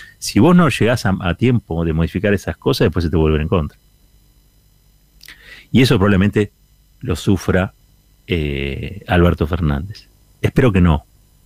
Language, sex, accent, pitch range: Spanish, male, Argentinian, 85-105 Hz